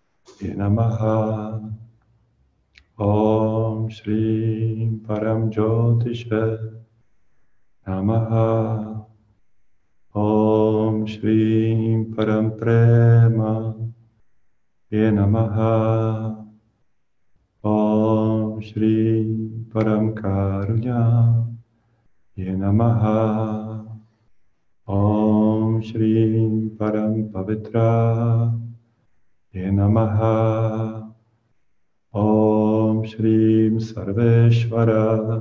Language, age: Czech, 40-59